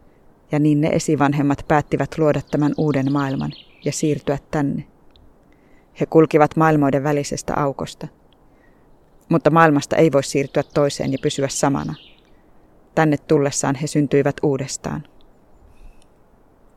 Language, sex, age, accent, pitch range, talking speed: Finnish, female, 20-39, native, 140-155 Hz, 110 wpm